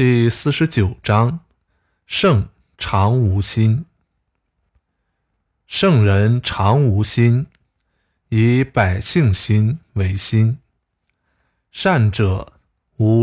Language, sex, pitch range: Chinese, male, 90-120 Hz